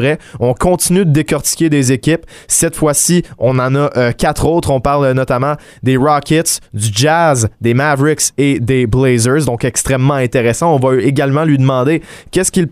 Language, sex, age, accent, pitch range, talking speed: French, male, 20-39, Canadian, 120-150 Hz, 170 wpm